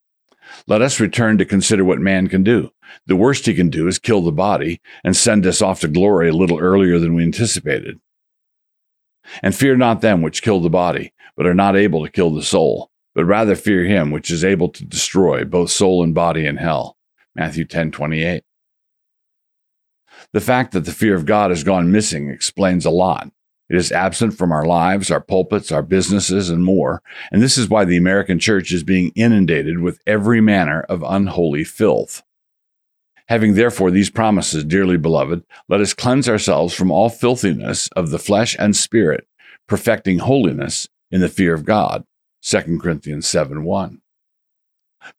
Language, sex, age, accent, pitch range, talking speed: English, male, 50-69, American, 85-105 Hz, 175 wpm